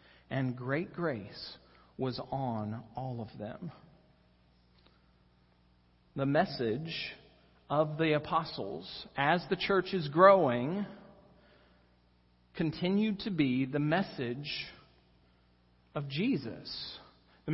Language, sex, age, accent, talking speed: English, male, 40-59, American, 90 wpm